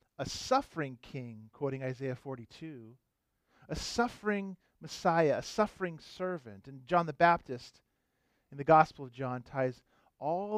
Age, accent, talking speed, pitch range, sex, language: 40-59, American, 130 wpm, 130-185 Hz, male, English